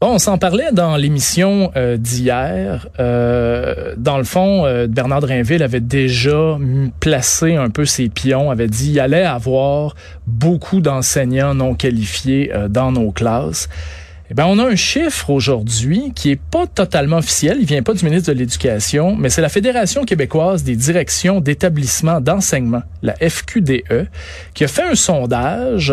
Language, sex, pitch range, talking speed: French, male, 120-155 Hz, 165 wpm